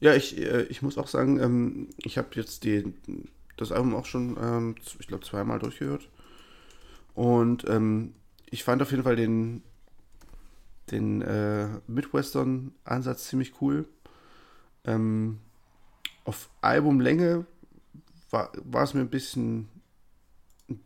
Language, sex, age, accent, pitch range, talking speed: German, male, 30-49, German, 105-130 Hz, 110 wpm